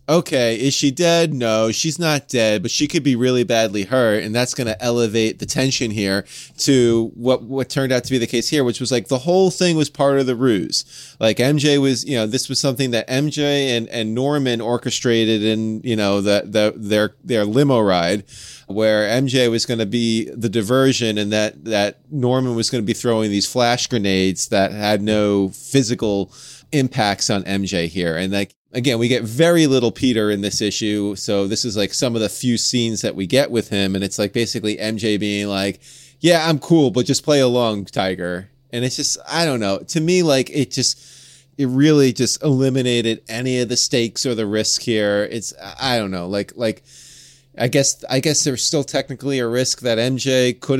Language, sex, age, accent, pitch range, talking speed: English, male, 30-49, American, 110-140 Hz, 210 wpm